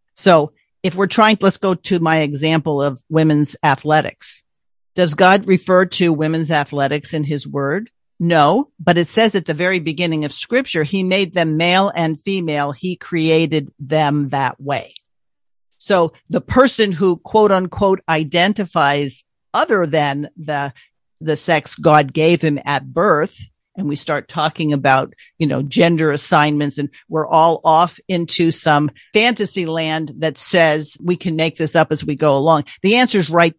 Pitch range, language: 155-195 Hz, English